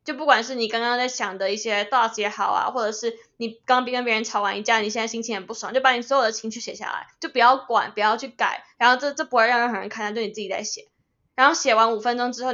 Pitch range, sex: 225-265 Hz, female